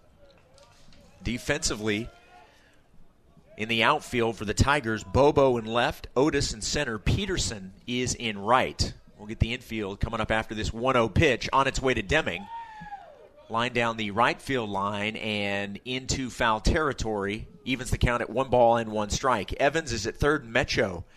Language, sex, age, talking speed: English, male, 30-49, 160 wpm